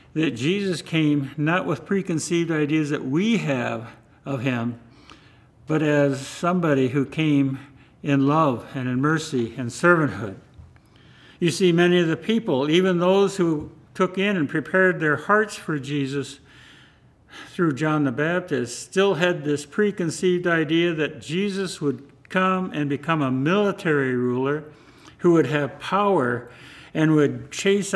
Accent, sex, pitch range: American, male, 140-175 Hz